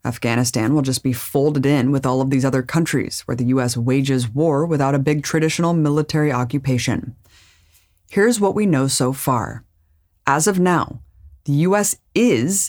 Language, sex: English, female